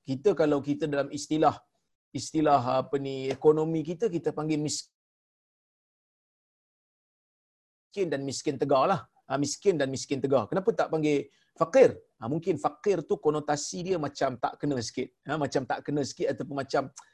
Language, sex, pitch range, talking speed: Malayalam, male, 130-160 Hz, 145 wpm